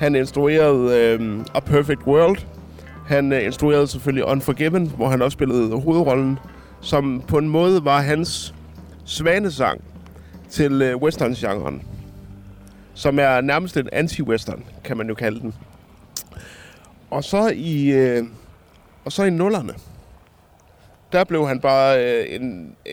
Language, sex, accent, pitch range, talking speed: Danish, male, native, 120-150 Hz, 125 wpm